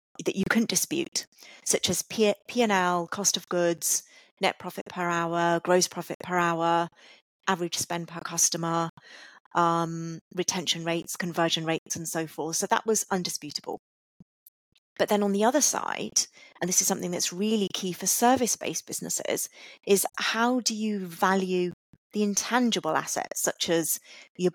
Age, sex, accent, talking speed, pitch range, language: 30-49, female, British, 150 wpm, 170-205 Hz, English